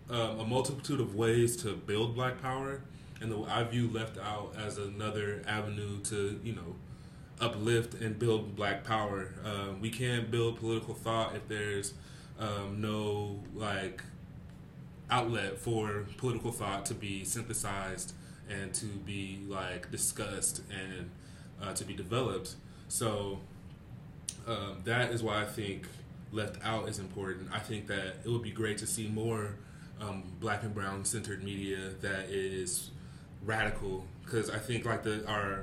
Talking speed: 150 wpm